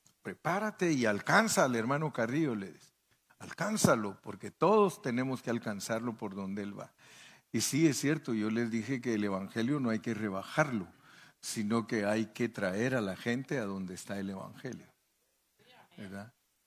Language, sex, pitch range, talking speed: Spanish, male, 105-155 Hz, 160 wpm